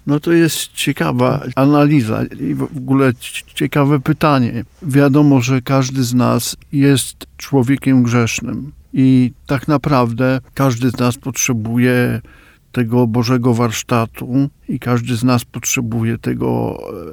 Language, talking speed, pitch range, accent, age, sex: Polish, 120 wpm, 120-140 Hz, native, 50-69, male